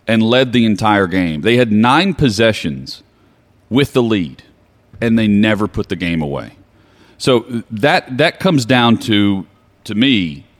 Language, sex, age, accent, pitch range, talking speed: English, male, 40-59, American, 100-130 Hz, 155 wpm